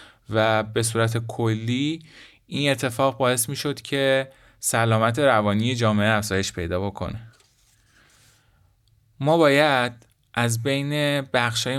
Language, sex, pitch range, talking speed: Persian, male, 110-130 Hz, 105 wpm